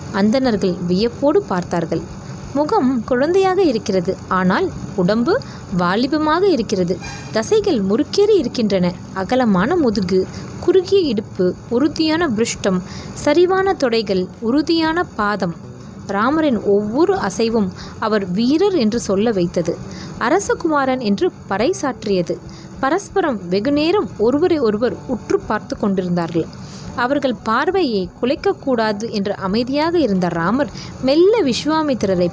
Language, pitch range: English, 190-290 Hz